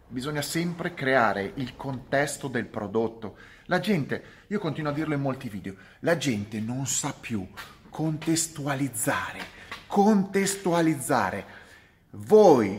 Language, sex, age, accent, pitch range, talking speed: Italian, male, 30-49, native, 105-145 Hz, 115 wpm